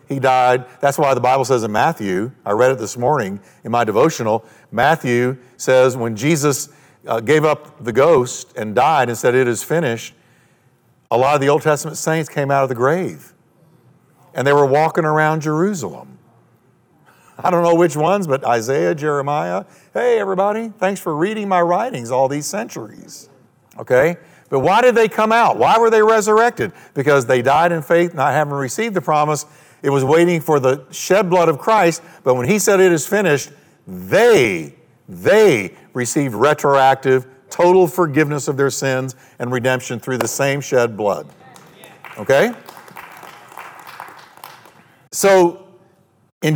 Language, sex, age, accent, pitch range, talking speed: English, male, 50-69, American, 135-185 Hz, 160 wpm